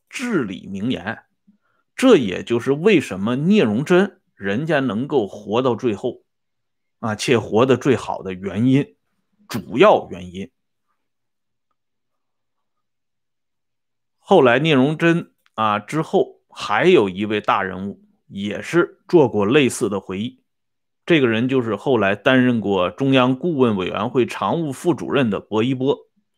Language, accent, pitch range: Swedish, Chinese, 125-205 Hz